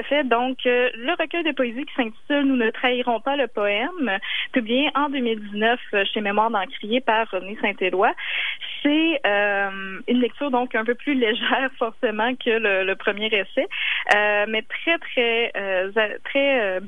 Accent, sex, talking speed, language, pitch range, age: Canadian, female, 175 wpm, French, 205-255 Hz, 20-39